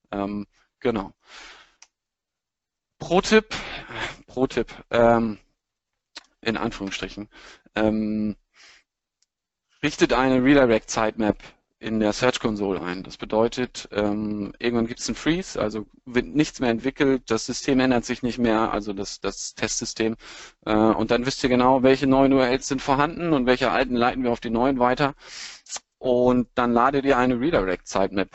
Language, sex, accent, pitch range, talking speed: German, male, German, 110-135 Hz, 140 wpm